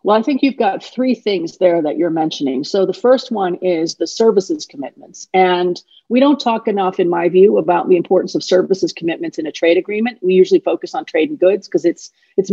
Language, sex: English, female